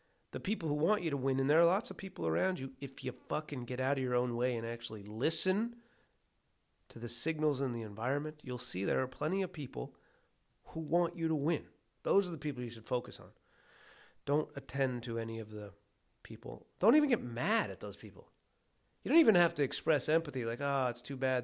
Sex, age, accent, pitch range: male, 30-49, American, 115-155 Hz